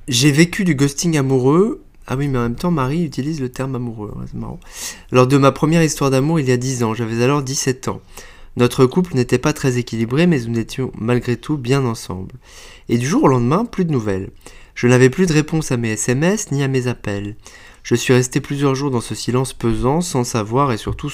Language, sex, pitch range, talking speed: French, male, 110-140 Hz, 220 wpm